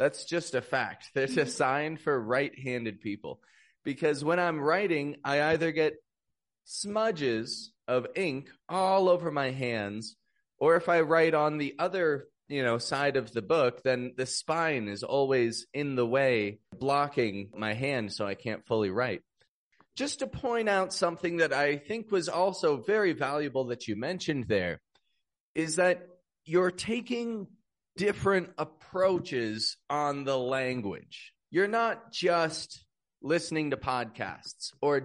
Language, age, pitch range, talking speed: English, 30-49, 125-170 Hz, 145 wpm